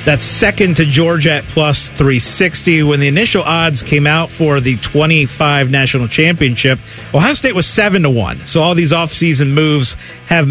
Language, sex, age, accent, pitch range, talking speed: English, male, 40-59, American, 140-175 Hz, 170 wpm